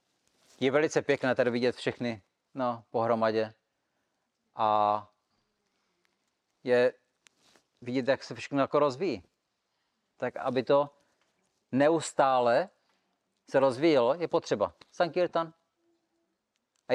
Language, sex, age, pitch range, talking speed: Czech, male, 40-59, 125-170 Hz, 90 wpm